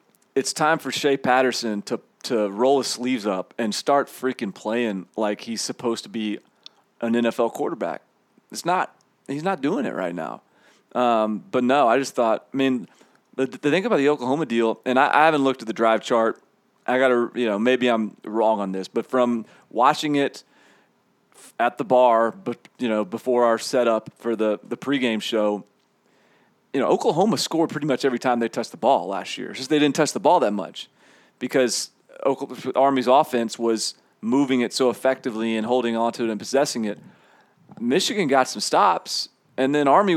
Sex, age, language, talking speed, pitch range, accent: male, 30-49, English, 190 wpm, 115-140 Hz, American